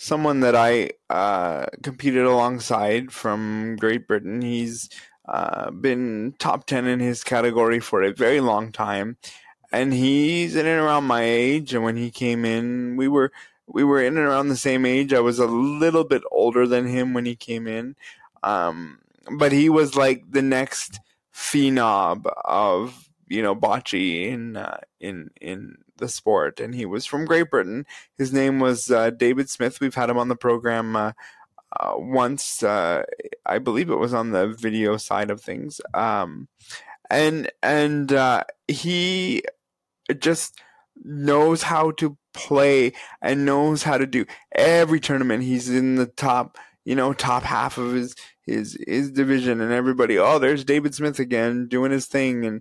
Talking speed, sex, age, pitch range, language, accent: 170 wpm, male, 20-39, 120-140 Hz, English, American